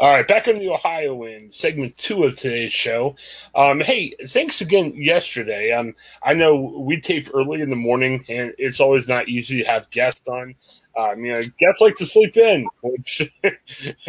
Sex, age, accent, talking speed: male, 30-49, American, 195 wpm